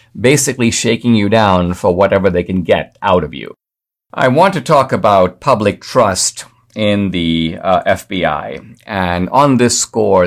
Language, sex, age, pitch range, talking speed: English, male, 50-69, 85-110 Hz, 160 wpm